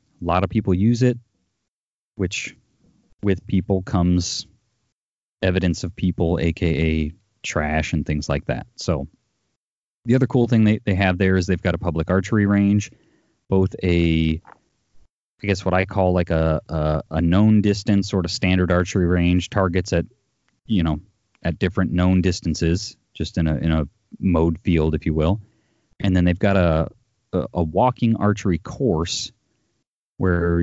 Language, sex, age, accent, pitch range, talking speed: English, male, 30-49, American, 85-100 Hz, 160 wpm